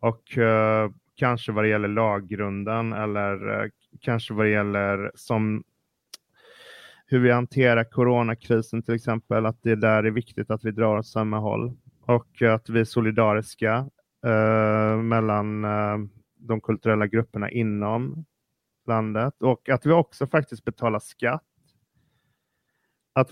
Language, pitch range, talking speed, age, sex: Swedish, 105-115 Hz, 135 wpm, 30-49, male